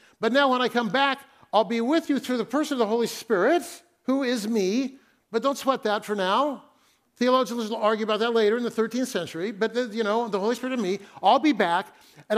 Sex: male